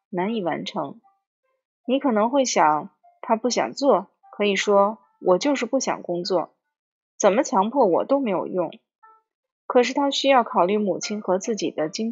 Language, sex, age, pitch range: Chinese, female, 20-39, 195-295 Hz